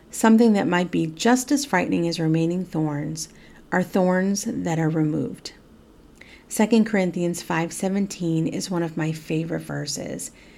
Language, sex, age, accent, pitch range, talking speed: English, female, 40-59, American, 165-225 Hz, 135 wpm